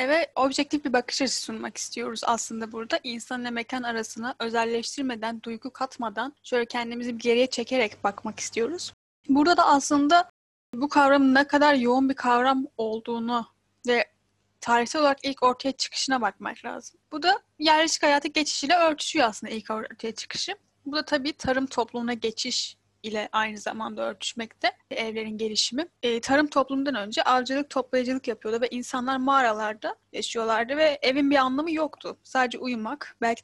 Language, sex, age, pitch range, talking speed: Turkish, female, 10-29, 230-285 Hz, 145 wpm